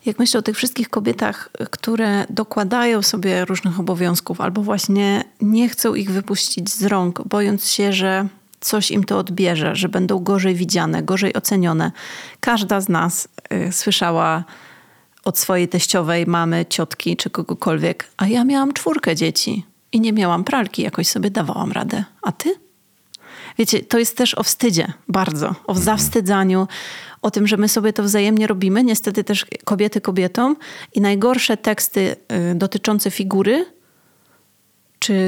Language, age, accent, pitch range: Polish, 30-49, native, 190-225 Hz